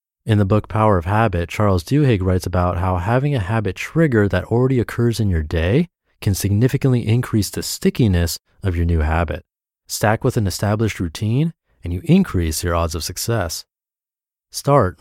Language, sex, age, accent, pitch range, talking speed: English, male, 30-49, American, 90-125 Hz, 170 wpm